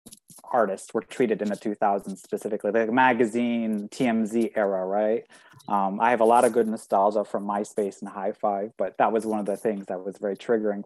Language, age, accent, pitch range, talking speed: English, 20-39, American, 105-130 Hz, 200 wpm